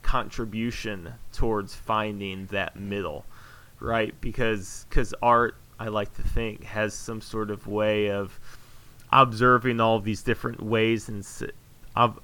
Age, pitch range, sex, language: 30-49, 105-125 Hz, male, English